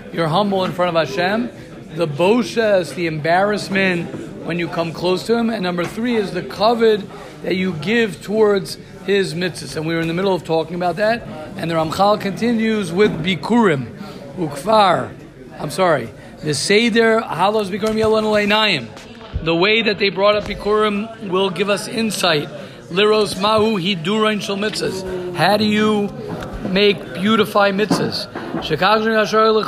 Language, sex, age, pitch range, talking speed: English, male, 50-69, 180-215 Hz, 140 wpm